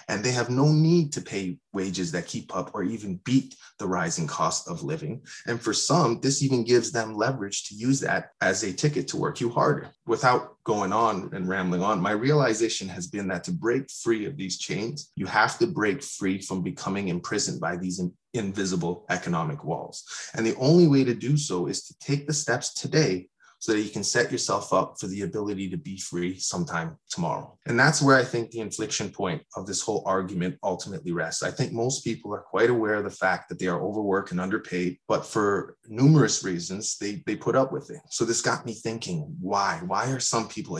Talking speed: 210 wpm